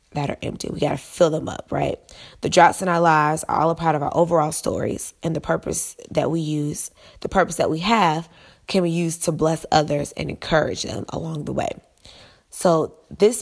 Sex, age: female, 20-39